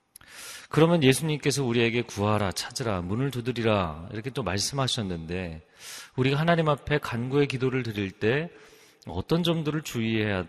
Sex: male